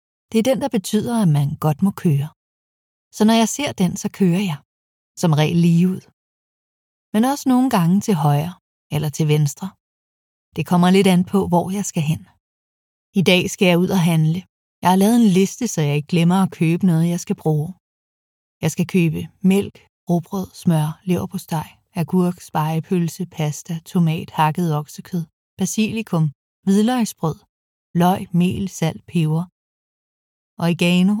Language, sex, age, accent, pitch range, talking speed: Danish, female, 30-49, native, 155-190 Hz, 160 wpm